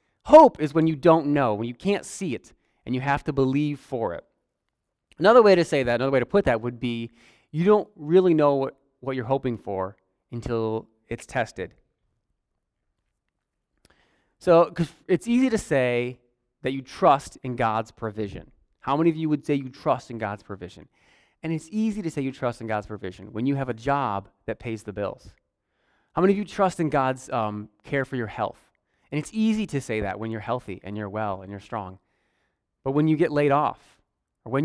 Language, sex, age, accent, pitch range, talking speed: English, male, 30-49, American, 110-160 Hz, 205 wpm